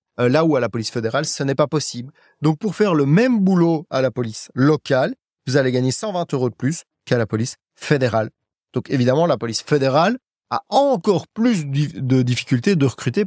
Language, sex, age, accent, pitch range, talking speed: French, male, 30-49, French, 125-160 Hz, 195 wpm